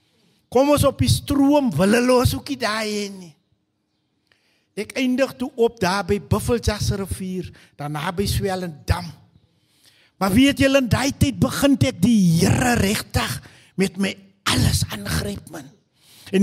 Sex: male